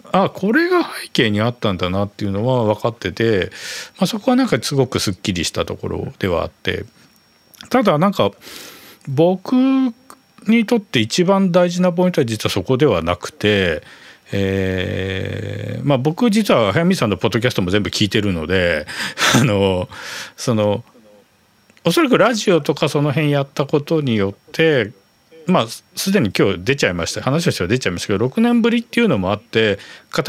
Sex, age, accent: male, 40-59, native